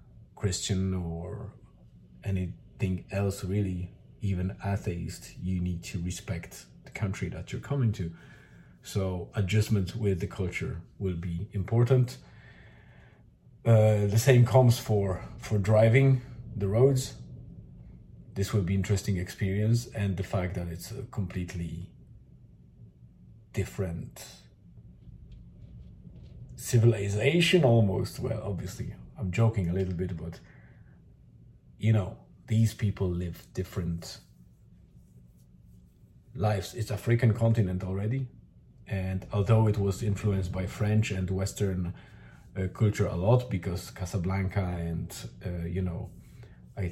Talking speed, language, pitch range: 115 wpm, English, 90-110 Hz